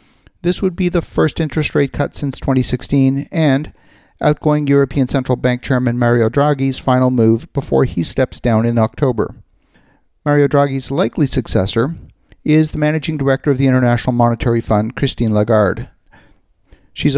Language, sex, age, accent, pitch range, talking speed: English, male, 50-69, American, 120-145 Hz, 145 wpm